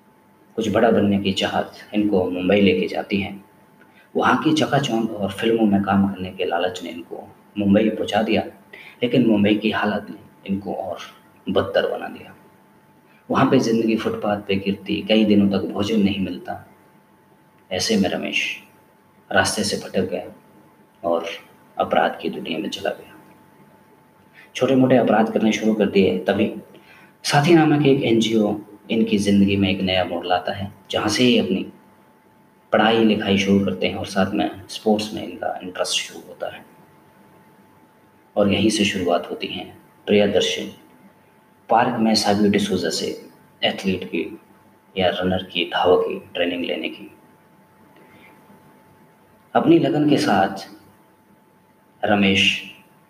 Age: 30-49